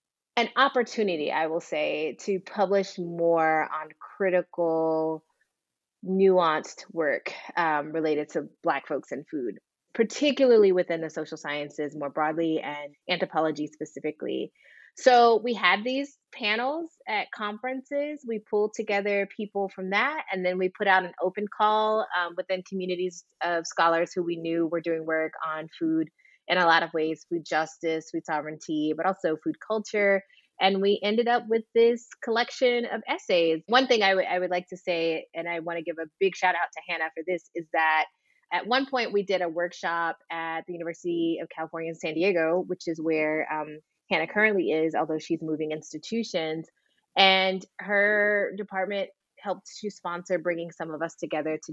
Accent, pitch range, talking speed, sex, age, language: American, 160-210 Hz, 170 wpm, female, 30-49, English